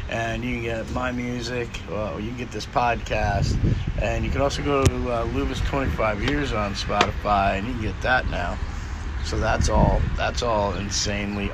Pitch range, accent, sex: 95-115 Hz, American, male